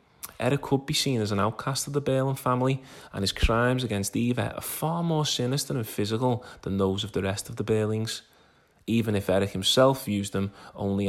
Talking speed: 200 wpm